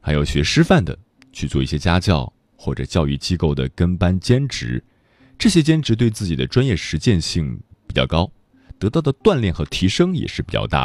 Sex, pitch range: male, 80-120 Hz